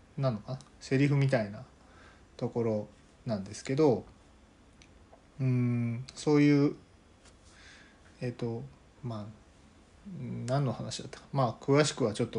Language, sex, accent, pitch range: Japanese, male, native, 100-130 Hz